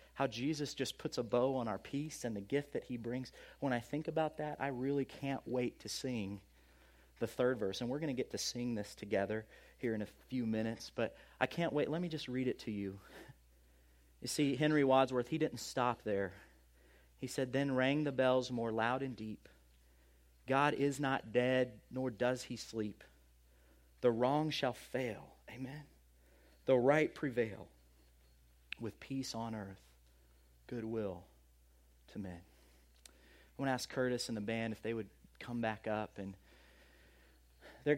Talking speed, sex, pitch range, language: 175 wpm, male, 95-135 Hz, English